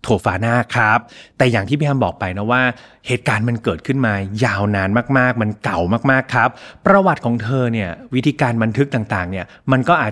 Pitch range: 105-140 Hz